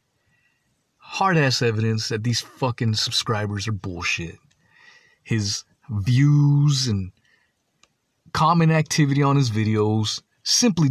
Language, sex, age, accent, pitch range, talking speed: English, male, 30-49, American, 110-140 Hz, 95 wpm